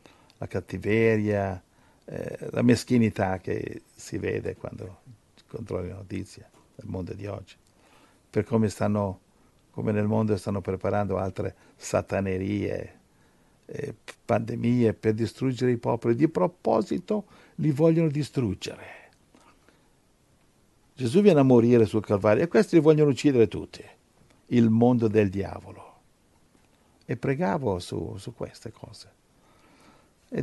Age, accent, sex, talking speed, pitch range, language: 60-79, native, male, 120 wpm, 100-115 Hz, Italian